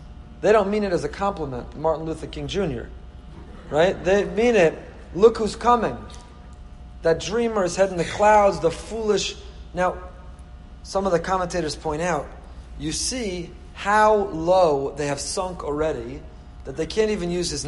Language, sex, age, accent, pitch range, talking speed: English, male, 30-49, American, 130-180 Hz, 160 wpm